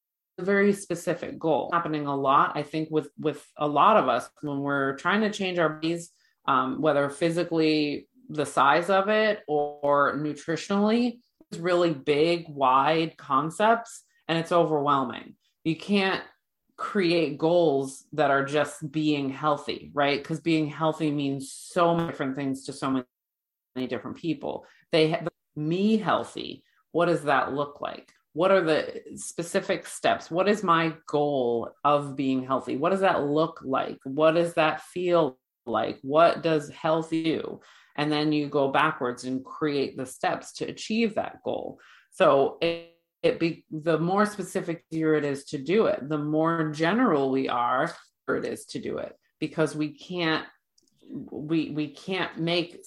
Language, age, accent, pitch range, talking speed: English, 30-49, American, 145-175 Hz, 160 wpm